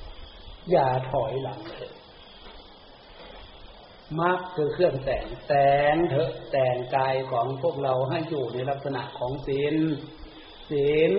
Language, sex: Thai, male